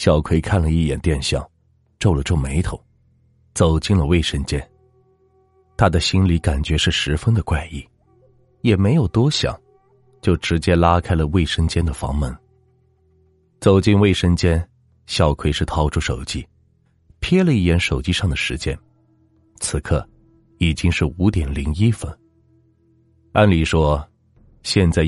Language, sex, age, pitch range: Chinese, male, 30-49, 80-115 Hz